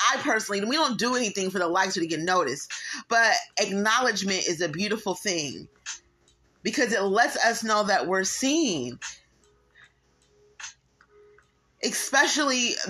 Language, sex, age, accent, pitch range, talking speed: English, female, 30-49, American, 175-235 Hz, 125 wpm